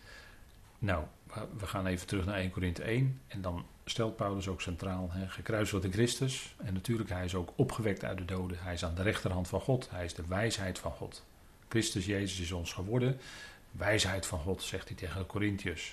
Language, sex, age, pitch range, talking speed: Dutch, male, 40-59, 90-115 Hz, 200 wpm